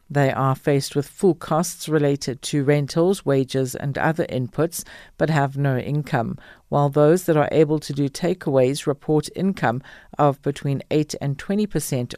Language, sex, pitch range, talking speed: English, female, 135-160 Hz, 165 wpm